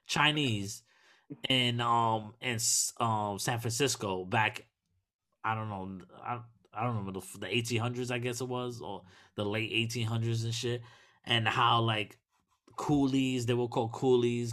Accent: American